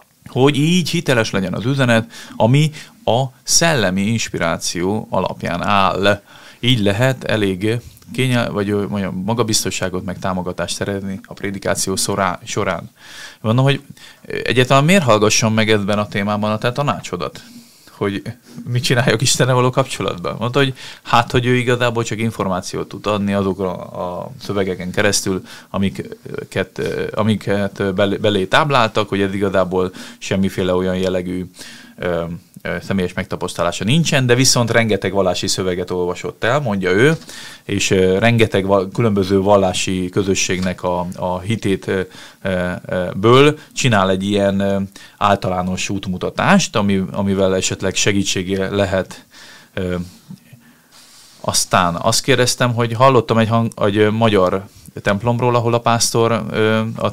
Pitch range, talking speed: 95-120 Hz, 120 wpm